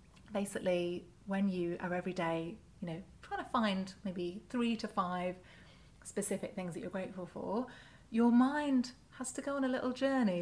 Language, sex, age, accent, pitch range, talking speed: English, female, 30-49, British, 180-230 Hz, 175 wpm